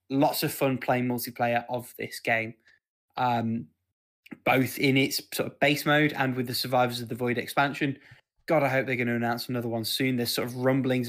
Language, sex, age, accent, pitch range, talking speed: English, male, 20-39, British, 120-135 Hz, 200 wpm